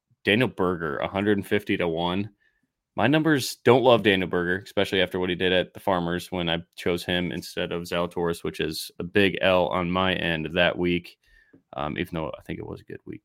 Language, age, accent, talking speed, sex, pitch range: English, 20-39, American, 210 wpm, male, 90-105 Hz